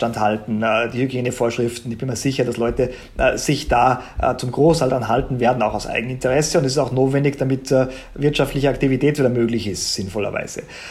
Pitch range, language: 135-175 Hz, German